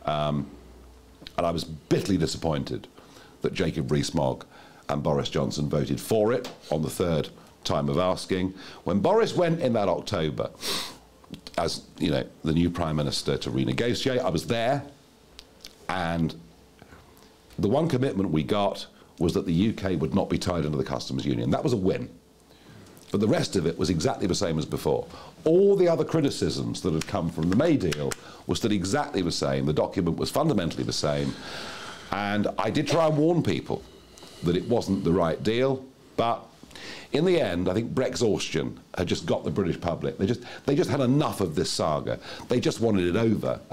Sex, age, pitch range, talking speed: male, 50-69, 75-110 Hz, 185 wpm